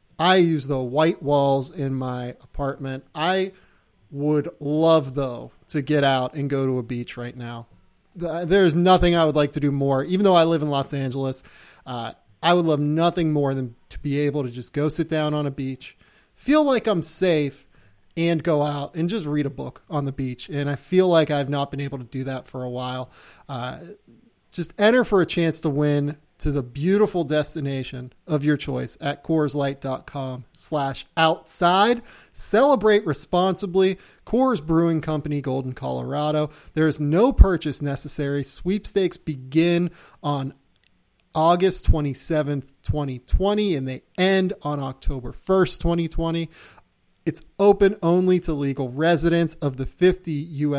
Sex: male